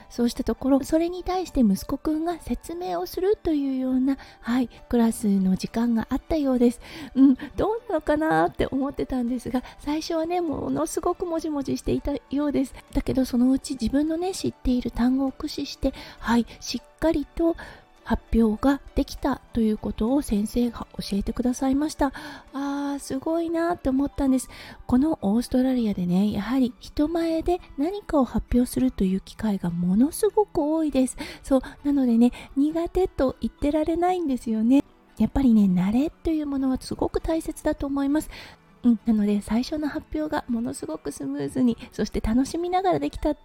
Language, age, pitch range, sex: Japanese, 30-49, 235-310 Hz, female